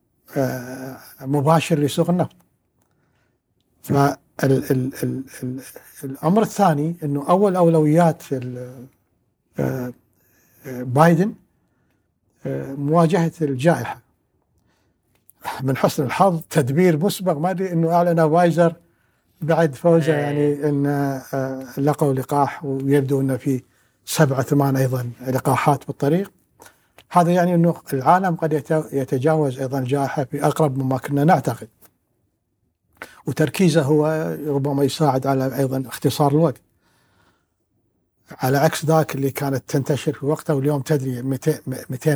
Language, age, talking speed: Arabic, 60-79, 95 wpm